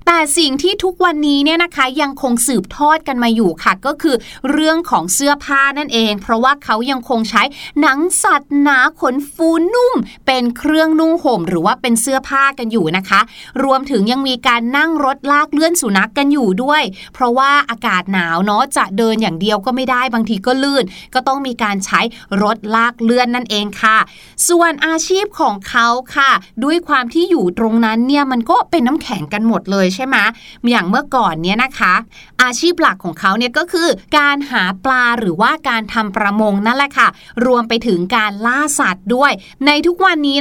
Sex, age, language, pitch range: female, 30-49, Thai, 225-295 Hz